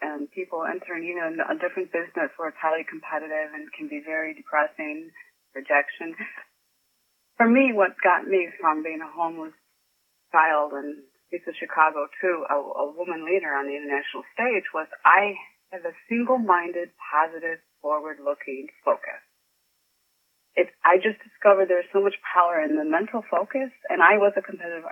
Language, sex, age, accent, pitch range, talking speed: English, female, 30-49, American, 165-240 Hz, 160 wpm